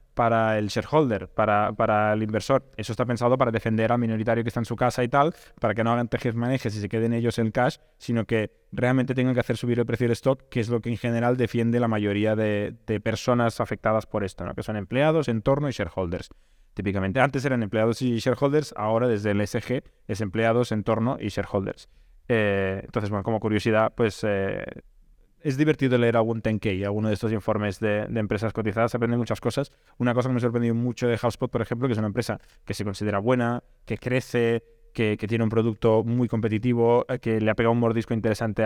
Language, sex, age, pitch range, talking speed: Spanish, male, 20-39, 110-125 Hz, 220 wpm